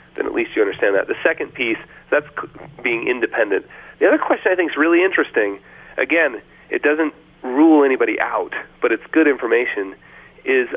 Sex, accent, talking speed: male, American, 175 wpm